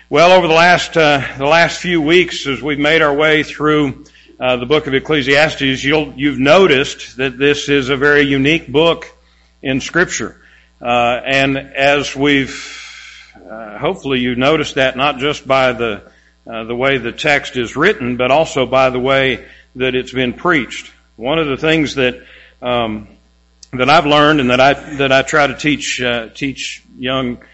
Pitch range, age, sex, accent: 125-150 Hz, 50-69, male, American